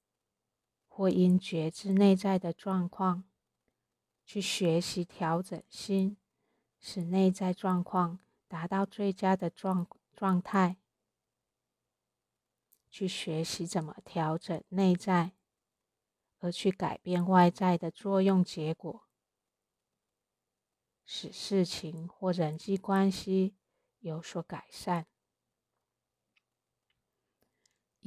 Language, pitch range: Chinese, 175-195 Hz